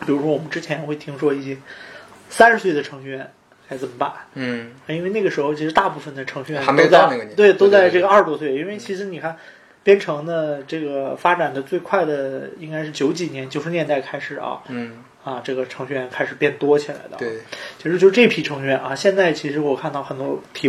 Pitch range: 135-180 Hz